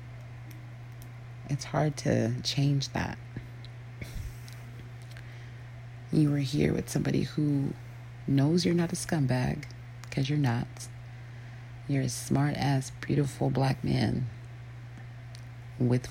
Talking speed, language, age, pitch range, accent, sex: 95 wpm, English, 30-49, 120-130 Hz, American, female